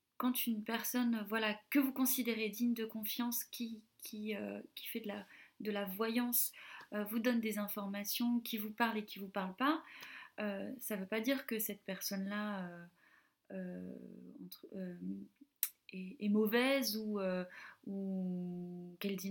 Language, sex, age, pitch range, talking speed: French, female, 20-39, 200-250 Hz, 170 wpm